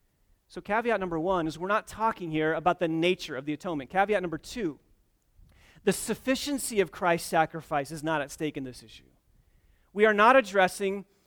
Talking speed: 180 wpm